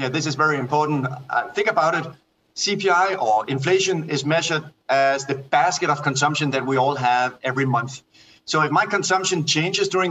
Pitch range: 140-170 Hz